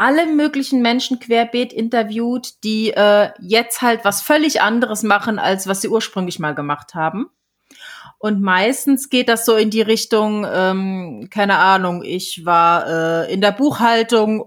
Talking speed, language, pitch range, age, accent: 155 wpm, German, 185-230 Hz, 30-49, German